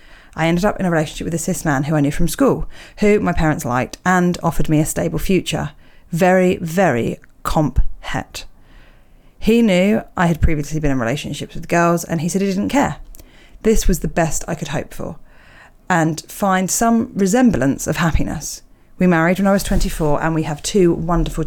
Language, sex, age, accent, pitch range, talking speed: English, female, 40-59, British, 155-190 Hz, 195 wpm